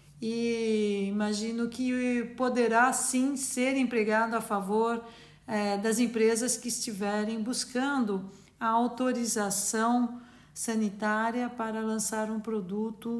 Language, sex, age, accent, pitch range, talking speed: English, female, 60-79, Brazilian, 220-255 Hz, 100 wpm